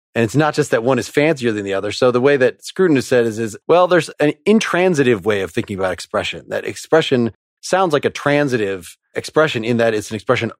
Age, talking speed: 30-49, 230 wpm